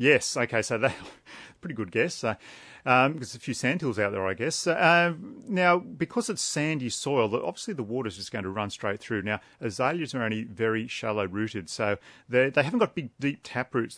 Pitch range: 100-135 Hz